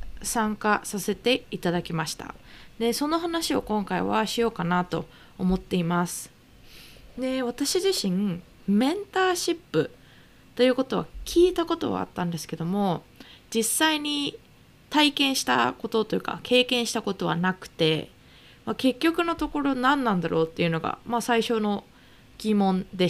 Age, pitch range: 20-39, 180-260 Hz